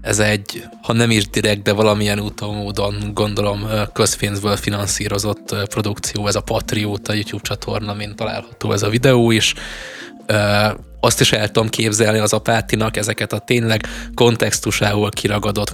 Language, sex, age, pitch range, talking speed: Hungarian, male, 20-39, 105-110 Hz, 140 wpm